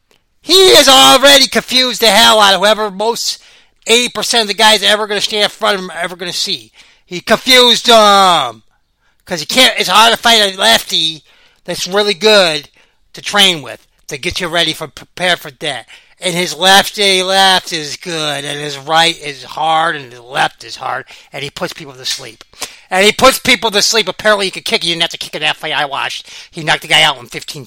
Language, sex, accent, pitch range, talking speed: English, male, American, 170-225 Hz, 230 wpm